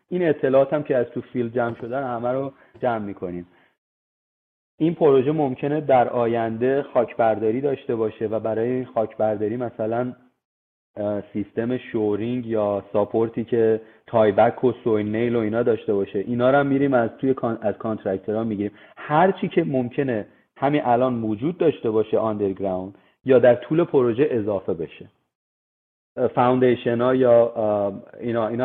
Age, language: 30-49, Persian